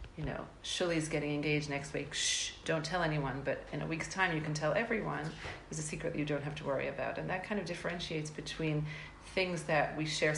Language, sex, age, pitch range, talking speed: English, female, 40-59, 150-185 Hz, 230 wpm